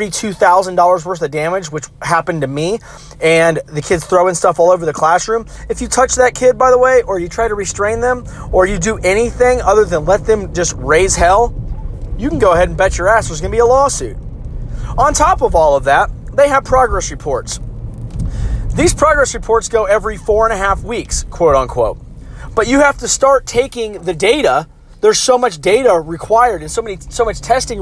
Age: 30-49